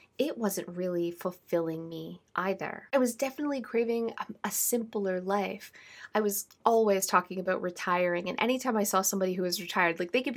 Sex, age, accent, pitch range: female, 20-39, American, 175-225 Hz